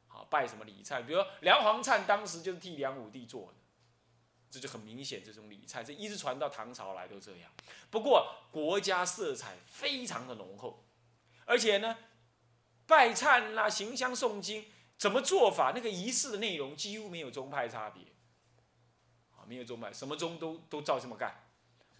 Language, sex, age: Chinese, male, 20-39